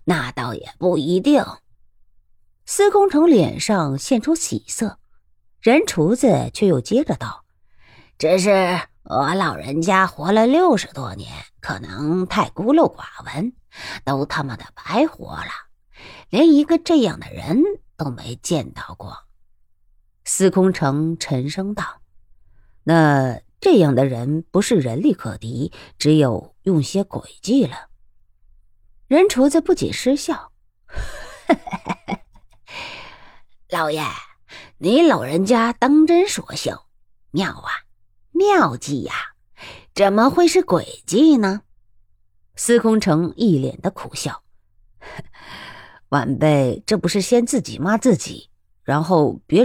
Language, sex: Chinese, female